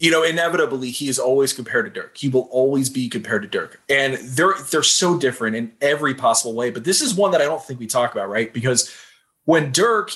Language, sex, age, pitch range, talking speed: English, male, 30-49, 125-160 Hz, 235 wpm